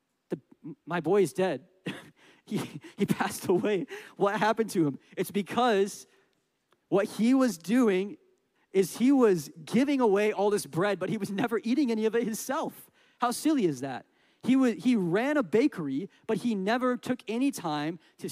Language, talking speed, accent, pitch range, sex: English, 170 wpm, American, 165-225 Hz, male